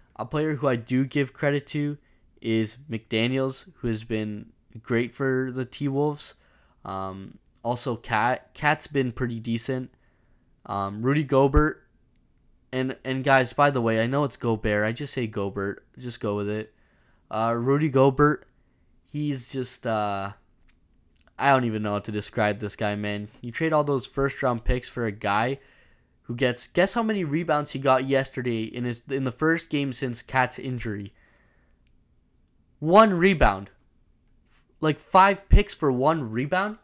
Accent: American